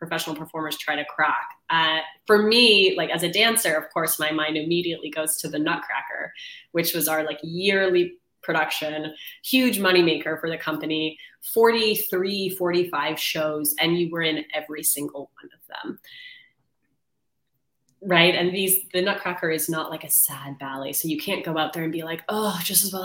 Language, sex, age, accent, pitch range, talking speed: English, female, 20-39, American, 155-195 Hz, 175 wpm